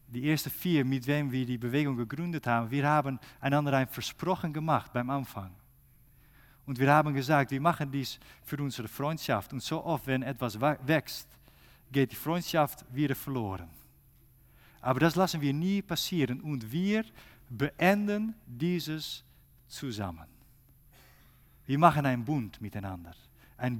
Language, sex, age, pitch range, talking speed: German, male, 50-69, 130-170 Hz, 140 wpm